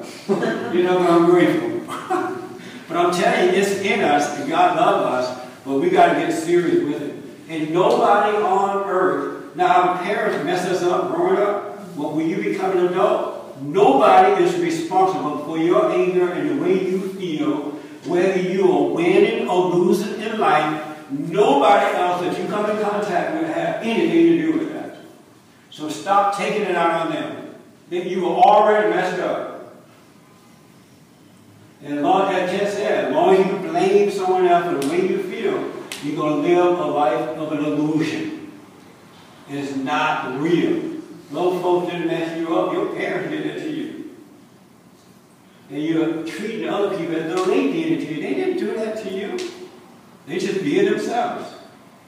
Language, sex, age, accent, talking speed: English, male, 60-79, American, 175 wpm